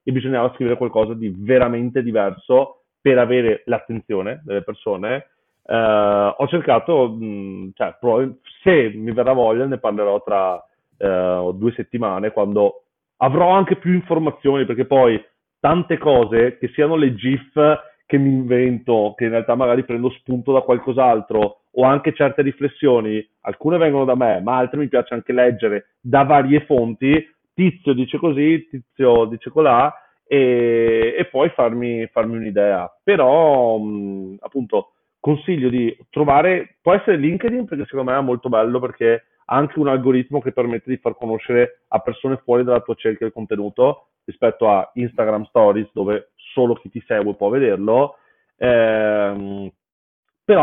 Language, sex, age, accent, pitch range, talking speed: Italian, male, 40-59, native, 115-140 Hz, 150 wpm